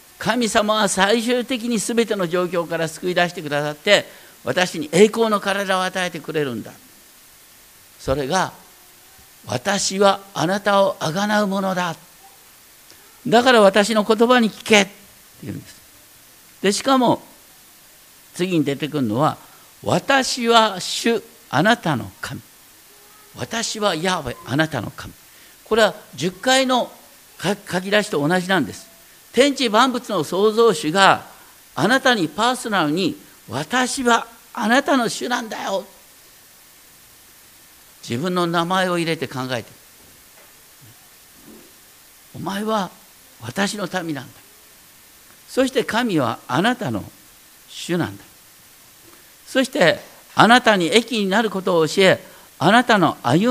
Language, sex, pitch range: Japanese, male, 175-230 Hz